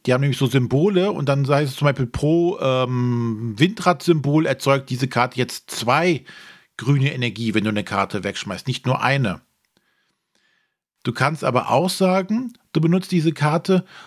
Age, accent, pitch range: 40-59, German, 130-175 Hz